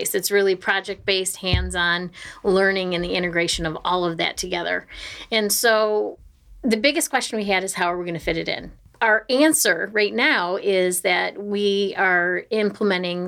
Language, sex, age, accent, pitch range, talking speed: English, female, 30-49, American, 170-205 Hz, 170 wpm